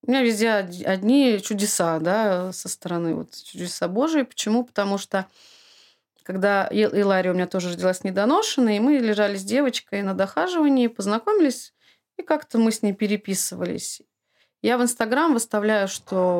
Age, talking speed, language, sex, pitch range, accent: 30-49, 150 wpm, Russian, female, 185-235 Hz, native